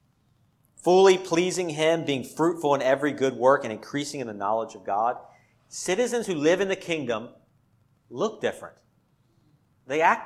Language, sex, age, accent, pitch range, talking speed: English, male, 40-59, American, 125-185 Hz, 150 wpm